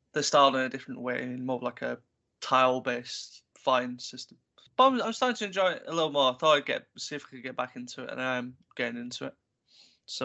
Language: English